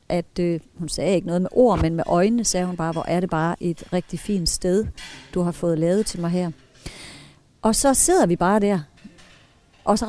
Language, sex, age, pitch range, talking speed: Danish, female, 40-59, 180-230 Hz, 220 wpm